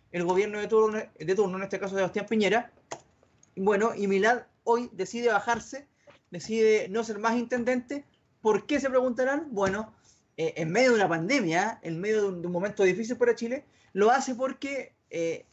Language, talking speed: Spanish, 185 wpm